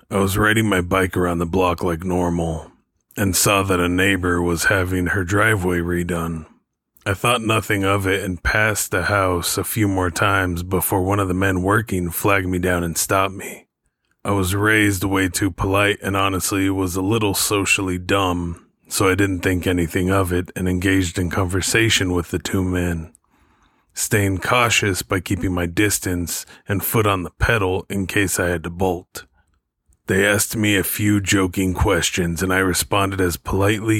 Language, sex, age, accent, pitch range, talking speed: English, male, 30-49, American, 90-100 Hz, 180 wpm